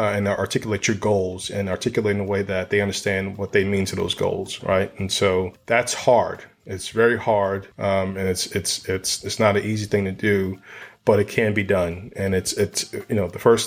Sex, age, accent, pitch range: male, 30-49, American, 95-105 Hz